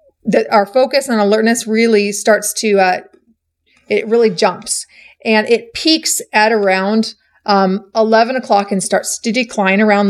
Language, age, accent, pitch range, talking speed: English, 30-49, American, 205-235 Hz, 150 wpm